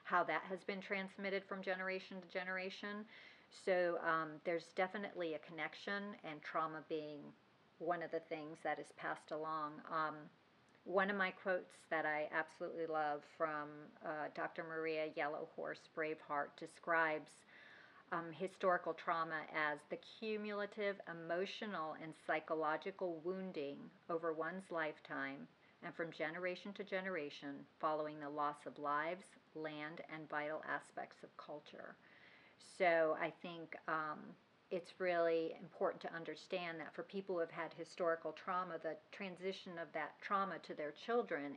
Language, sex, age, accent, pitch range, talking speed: English, female, 40-59, American, 155-185 Hz, 140 wpm